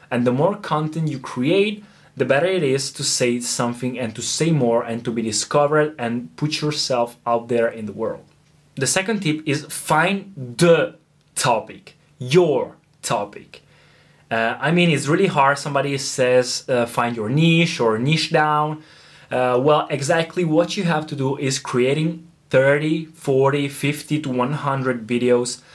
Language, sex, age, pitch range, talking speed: Italian, male, 20-39, 125-155 Hz, 160 wpm